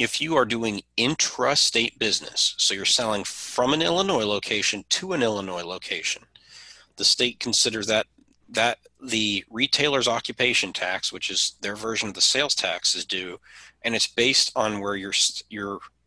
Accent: American